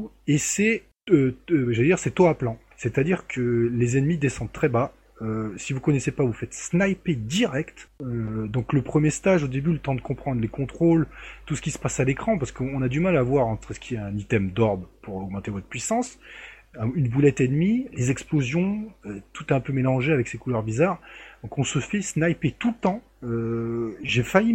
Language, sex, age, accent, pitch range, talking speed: French, male, 20-39, French, 115-165 Hz, 225 wpm